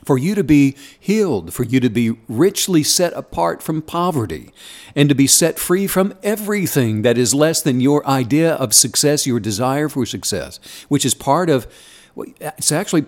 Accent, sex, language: American, male, English